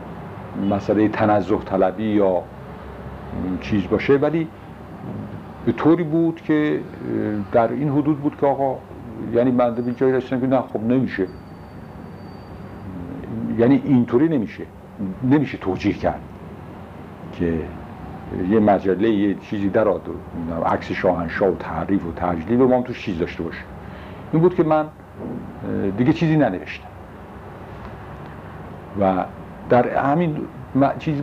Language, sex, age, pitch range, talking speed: Persian, male, 60-79, 90-120 Hz, 120 wpm